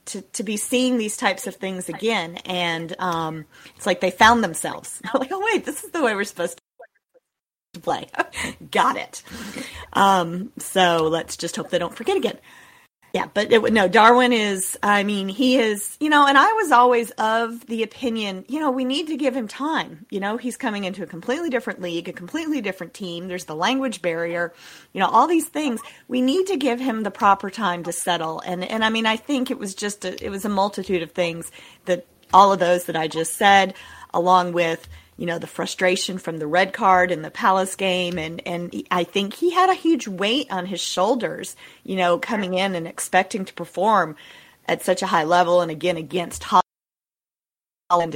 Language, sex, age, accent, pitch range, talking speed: English, female, 40-59, American, 175-240 Hz, 205 wpm